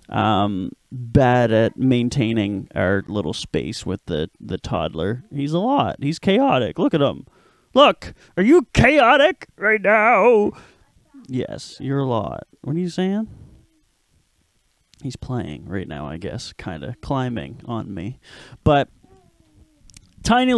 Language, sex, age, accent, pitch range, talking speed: English, male, 20-39, American, 120-155 Hz, 135 wpm